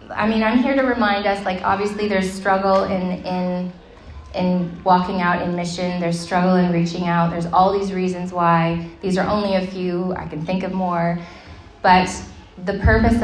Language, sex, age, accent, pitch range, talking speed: English, female, 20-39, American, 175-195 Hz, 185 wpm